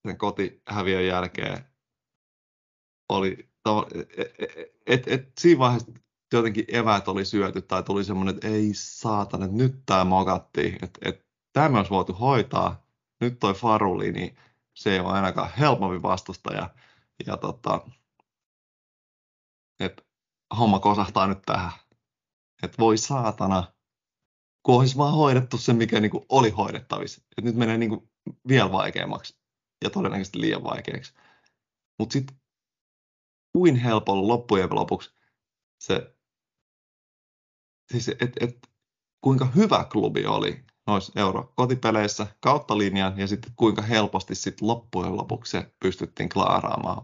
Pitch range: 95-120 Hz